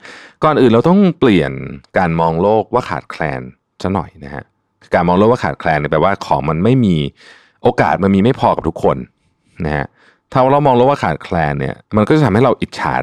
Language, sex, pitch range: Thai, male, 75-110 Hz